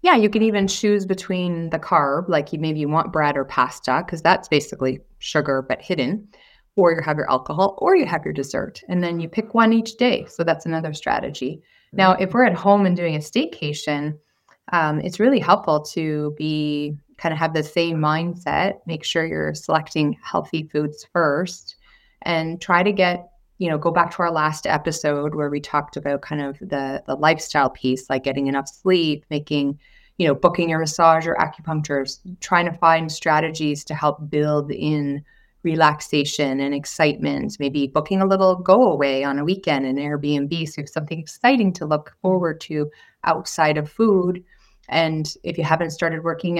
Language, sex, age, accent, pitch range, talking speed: English, female, 30-49, American, 150-180 Hz, 185 wpm